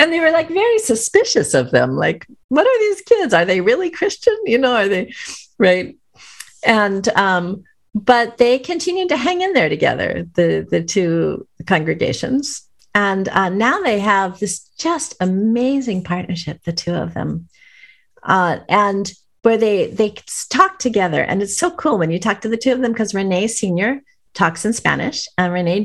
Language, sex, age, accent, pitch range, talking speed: English, female, 50-69, American, 180-260 Hz, 175 wpm